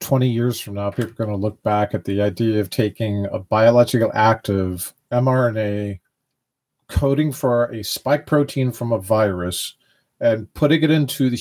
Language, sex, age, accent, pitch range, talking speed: English, male, 40-59, American, 105-135 Hz, 170 wpm